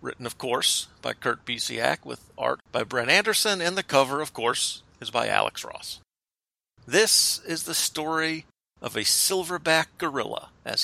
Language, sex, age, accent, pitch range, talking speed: English, male, 50-69, American, 115-175 Hz, 160 wpm